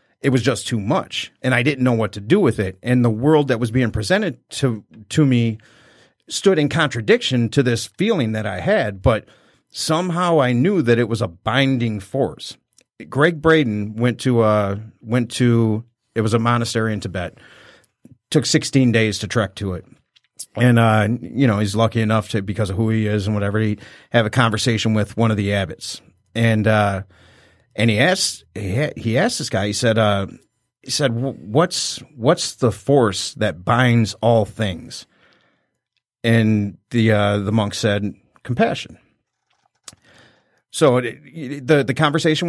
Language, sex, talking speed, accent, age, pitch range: English, male, 175 wpm, American, 40-59, 105-125 Hz